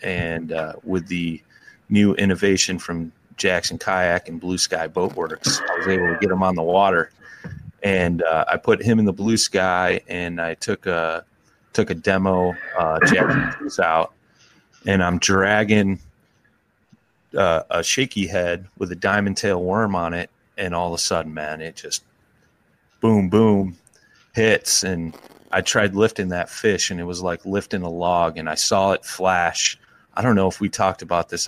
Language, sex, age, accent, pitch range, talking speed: English, male, 30-49, American, 90-105 Hz, 170 wpm